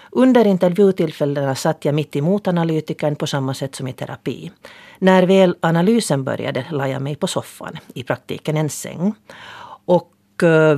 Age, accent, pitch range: 40-59, native, 145-185 Hz